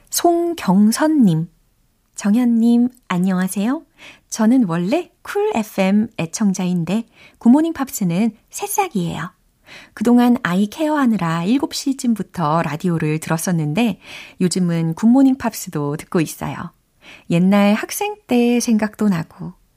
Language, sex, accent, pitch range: Korean, female, native, 170-240 Hz